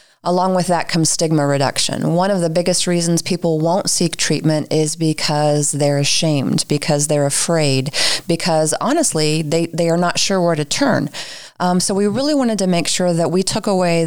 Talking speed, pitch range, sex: 190 wpm, 155-185 Hz, female